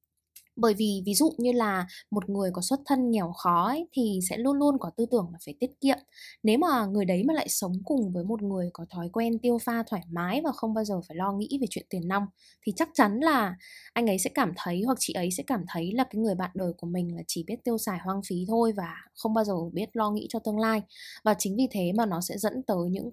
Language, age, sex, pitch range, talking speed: Vietnamese, 10-29, female, 185-245 Hz, 265 wpm